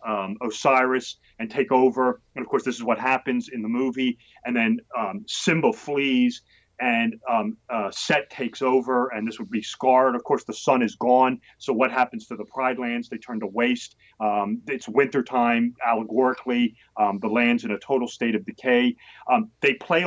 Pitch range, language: 120-155 Hz, English